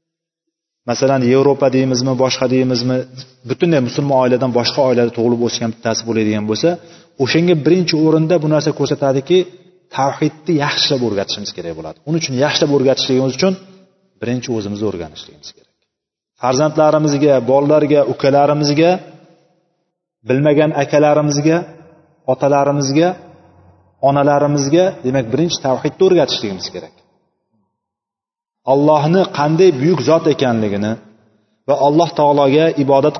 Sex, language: male, Bulgarian